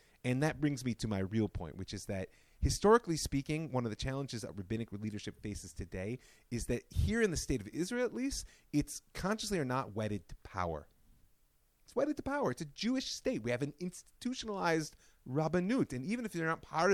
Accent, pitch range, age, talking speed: American, 100-170 Hz, 30-49, 205 wpm